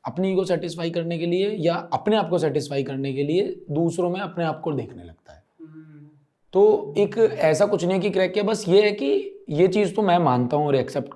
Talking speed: 225 wpm